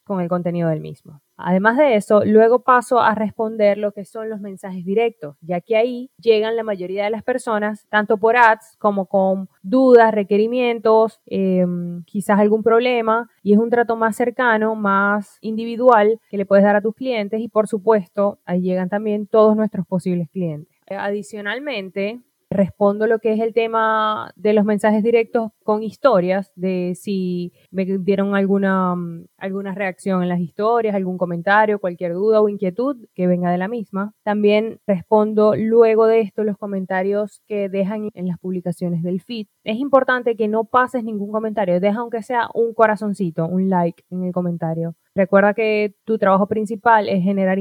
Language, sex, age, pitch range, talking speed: Spanish, female, 20-39, 190-225 Hz, 170 wpm